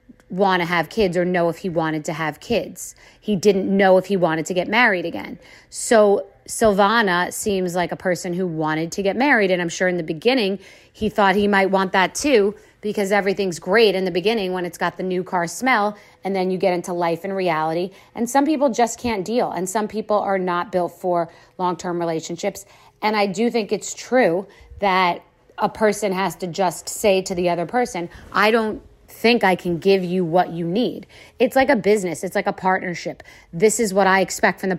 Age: 40-59